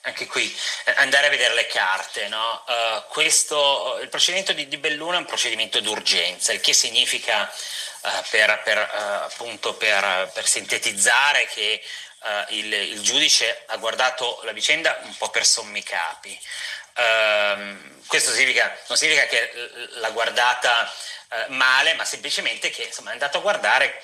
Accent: native